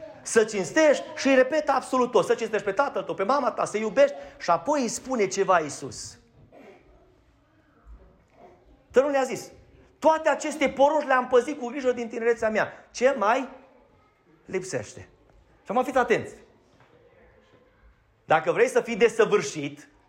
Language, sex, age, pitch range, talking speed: Romanian, male, 30-49, 160-260 Hz, 145 wpm